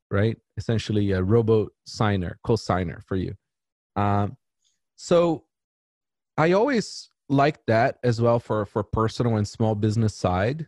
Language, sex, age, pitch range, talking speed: English, male, 30-49, 100-125 Hz, 125 wpm